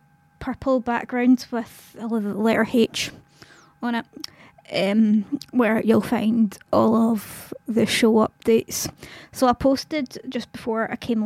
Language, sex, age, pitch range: English, female, 20-39, 220-250 Hz